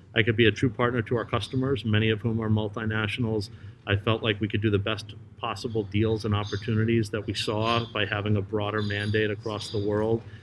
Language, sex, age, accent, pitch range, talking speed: English, male, 40-59, American, 105-115 Hz, 215 wpm